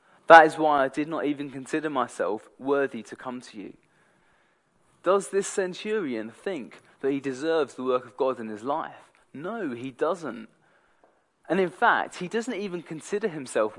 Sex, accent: male, British